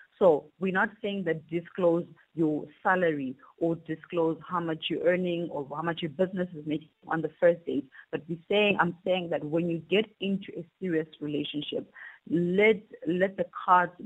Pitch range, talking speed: 155-190 Hz, 180 wpm